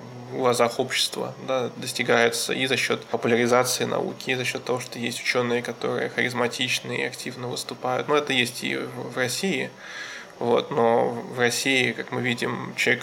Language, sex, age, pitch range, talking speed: Russian, male, 20-39, 115-130 Hz, 170 wpm